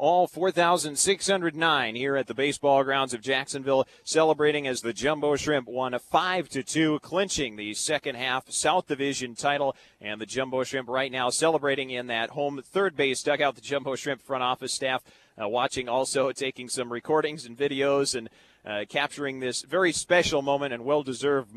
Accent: American